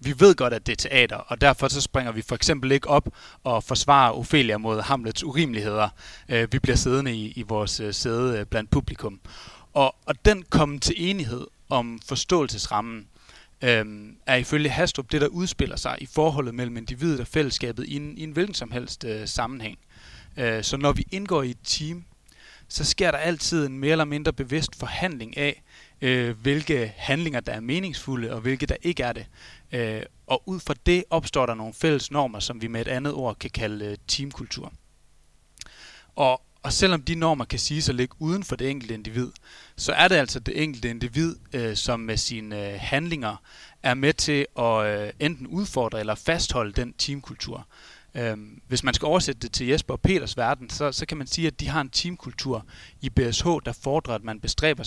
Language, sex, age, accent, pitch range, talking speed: Danish, male, 30-49, native, 115-150 Hz, 185 wpm